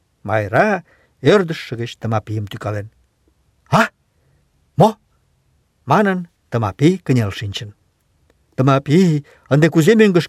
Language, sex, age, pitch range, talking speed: Russian, male, 50-69, 110-175 Hz, 95 wpm